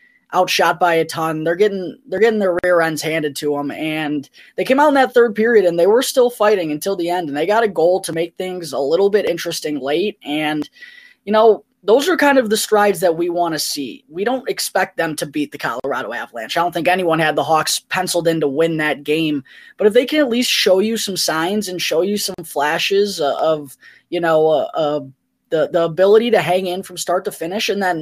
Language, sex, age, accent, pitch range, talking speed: English, female, 20-39, American, 155-205 Hz, 240 wpm